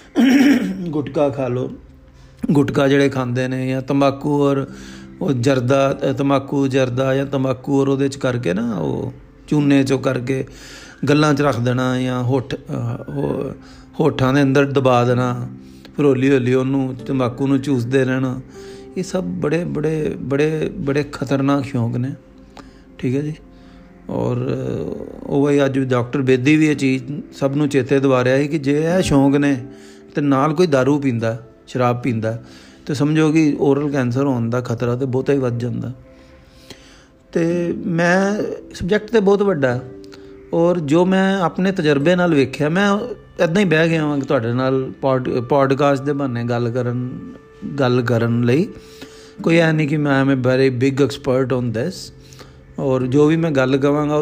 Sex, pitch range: male, 125-150 Hz